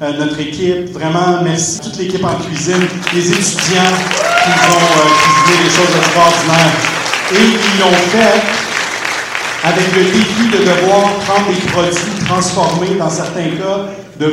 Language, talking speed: French, 145 wpm